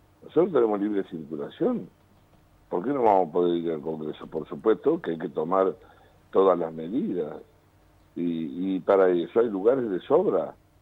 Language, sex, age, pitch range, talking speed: Spanish, male, 60-79, 80-95 Hz, 165 wpm